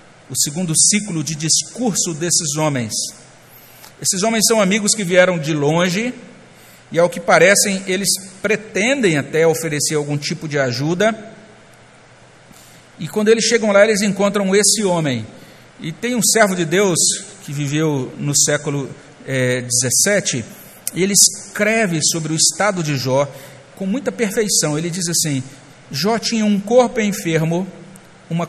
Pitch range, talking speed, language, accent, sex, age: 160-220 Hz, 145 wpm, Portuguese, Brazilian, male, 60-79